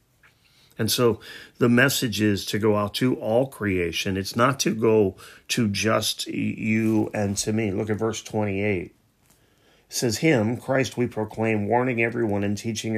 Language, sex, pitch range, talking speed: English, male, 100-115 Hz, 160 wpm